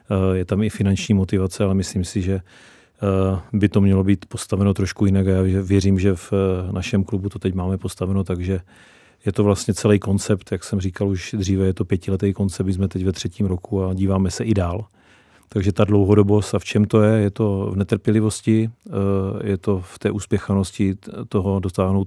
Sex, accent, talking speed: male, native, 195 wpm